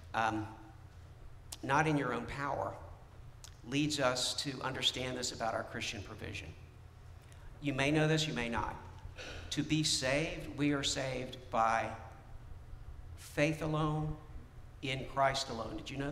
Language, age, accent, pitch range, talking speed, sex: English, 50-69, American, 110-155 Hz, 140 wpm, male